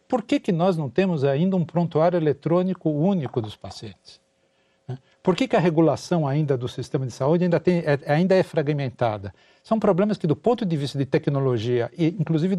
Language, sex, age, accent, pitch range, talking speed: Portuguese, male, 60-79, Brazilian, 140-190 Hz, 190 wpm